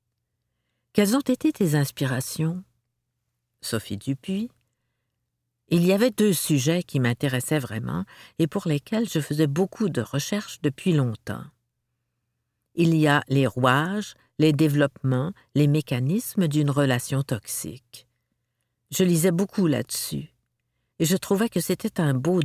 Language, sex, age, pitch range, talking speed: French, female, 50-69, 125-175 Hz, 130 wpm